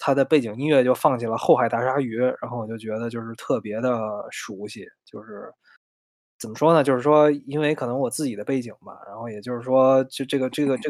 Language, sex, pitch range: Chinese, male, 120-150 Hz